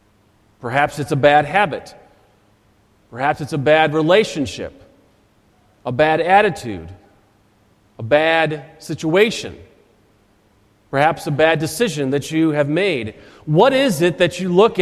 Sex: male